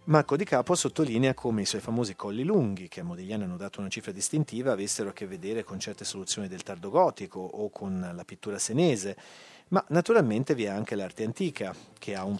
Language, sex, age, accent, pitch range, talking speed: Italian, male, 40-59, native, 100-155 Hz, 210 wpm